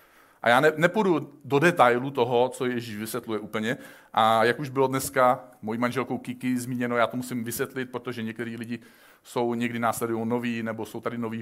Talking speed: 185 wpm